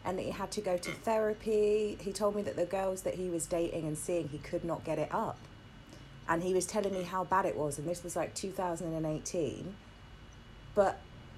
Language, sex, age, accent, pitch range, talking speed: English, female, 30-49, British, 155-220 Hz, 230 wpm